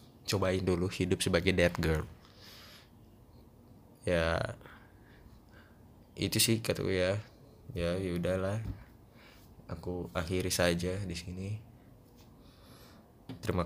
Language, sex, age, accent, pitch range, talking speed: Indonesian, male, 20-39, native, 85-110 Hz, 85 wpm